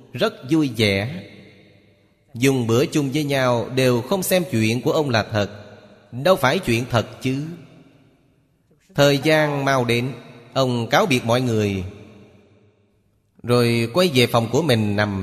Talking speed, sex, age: 145 wpm, male, 30-49